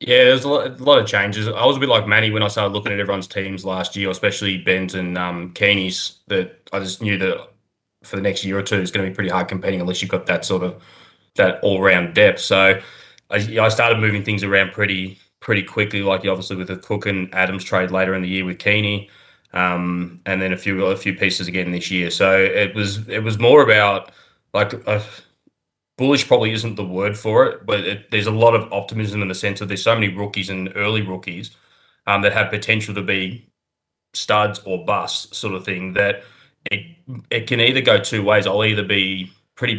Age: 20-39